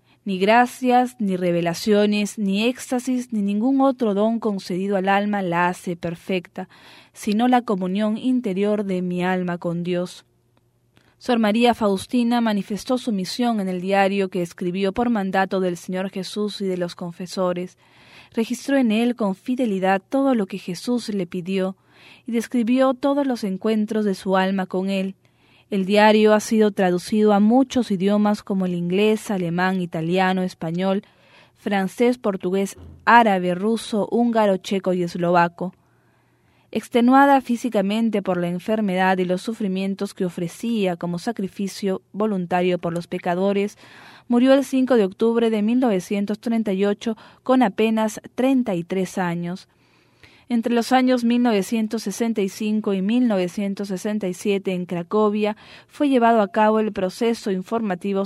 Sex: female